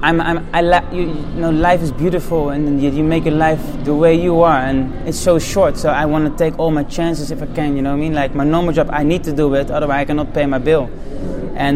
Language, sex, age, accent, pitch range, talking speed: English, male, 20-39, Dutch, 150-175 Hz, 285 wpm